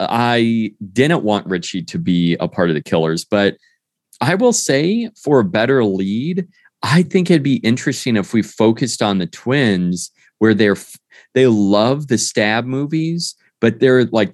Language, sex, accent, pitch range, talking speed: English, male, American, 95-130 Hz, 165 wpm